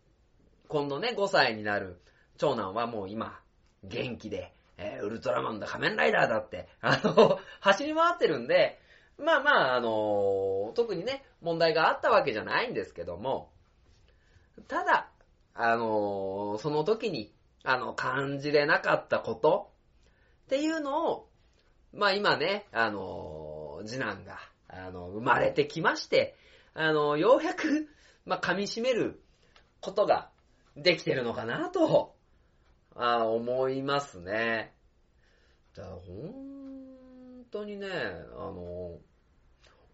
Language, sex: Japanese, male